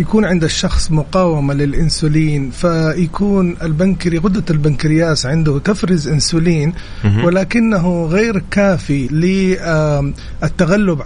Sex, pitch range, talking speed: male, 150-175 Hz, 85 wpm